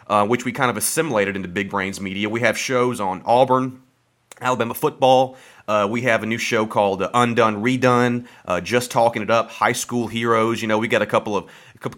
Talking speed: 215 wpm